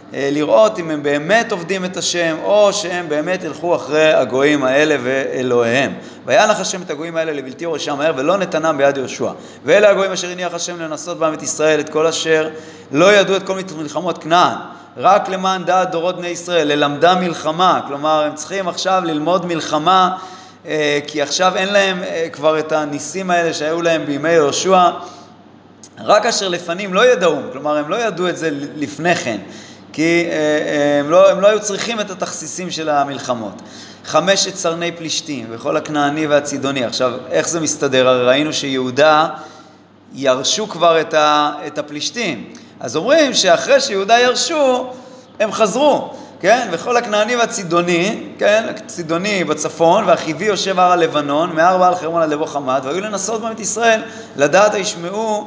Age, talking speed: 30-49, 145 wpm